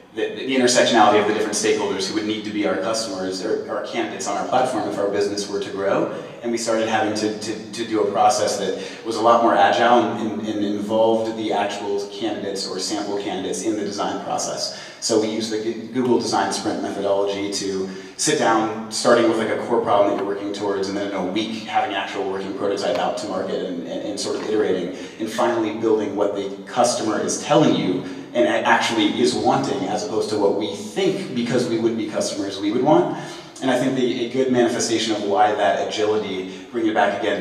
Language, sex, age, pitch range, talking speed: English, male, 30-49, 100-115 Hz, 220 wpm